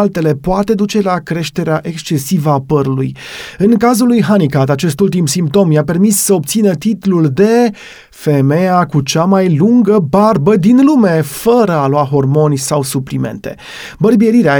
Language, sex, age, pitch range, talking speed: Romanian, male, 30-49, 155-205 Hz, 150 wpm